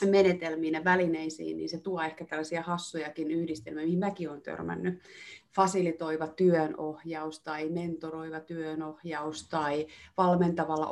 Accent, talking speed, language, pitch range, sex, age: native, 115 wpm, Finnish, 155-180 Hz, female, 30-49